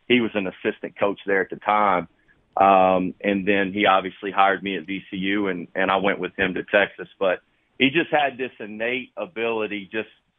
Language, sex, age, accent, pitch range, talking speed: English, male, 40-59, American, 100-120 Hz, 195 wpm